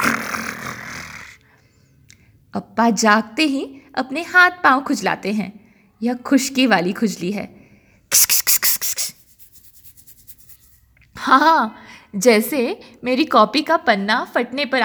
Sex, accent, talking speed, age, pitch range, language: female, native, 105 wpm, 20-39, 195-255 Hz, Hindi